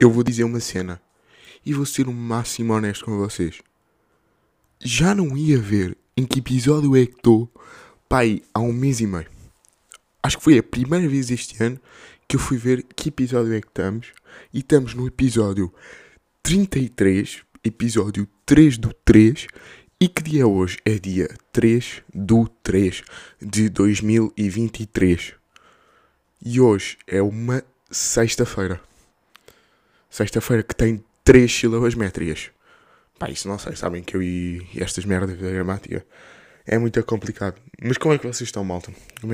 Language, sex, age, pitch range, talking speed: Portuguese, male, 20-39, 95-125 Hz, 150 wpm